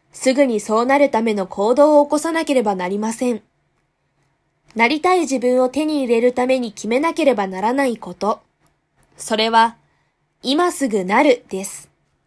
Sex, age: female, 20-39